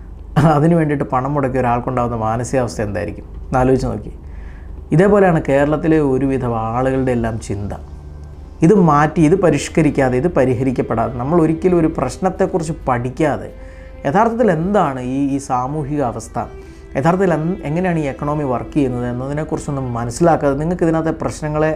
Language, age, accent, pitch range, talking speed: Malayalam, 30-49, native, 115-155 Hz, 120 wpm